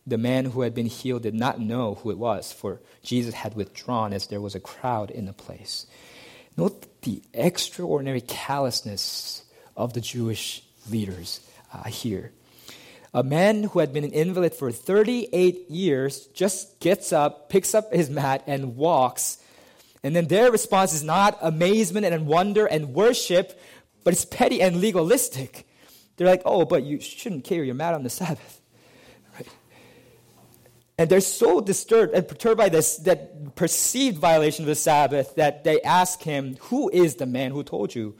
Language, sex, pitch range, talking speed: English, male, 125-170 Hz, 165 wpm